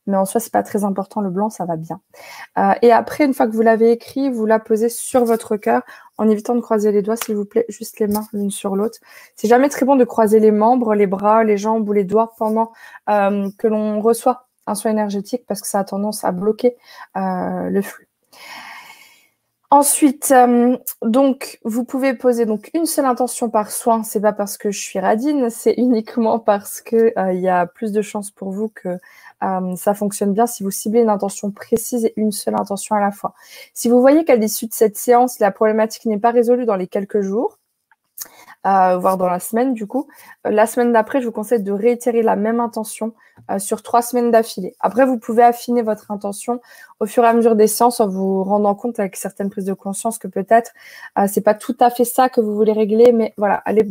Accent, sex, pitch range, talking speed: French, female, 205-240 Hz, 225 wpm